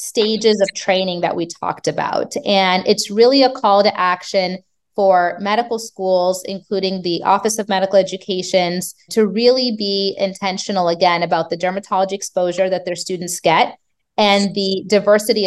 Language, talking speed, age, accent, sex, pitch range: English, 150 wpm, 30-49, American, female, 175-210 Hz